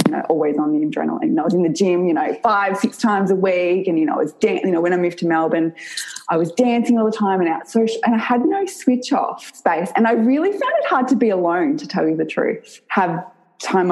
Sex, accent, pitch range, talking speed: female, Australian, 165-265 Hz, 275 wpm